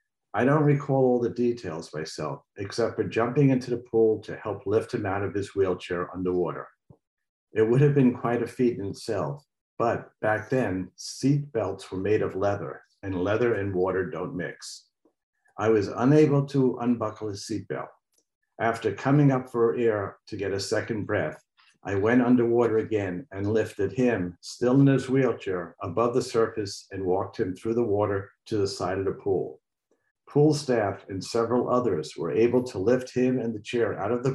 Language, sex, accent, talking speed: English, male, American, 185 wpm